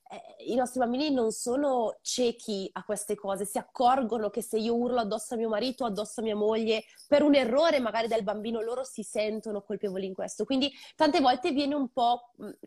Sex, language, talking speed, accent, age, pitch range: female, Italian, 200 wpm, native, 20-39, 215-270 Hz